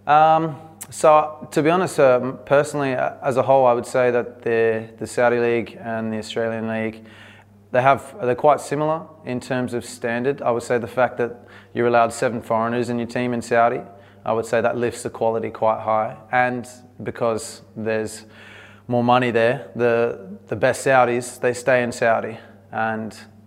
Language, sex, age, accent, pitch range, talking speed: English, male, 20-39, Australian, 110-125 Hz, 180 wpm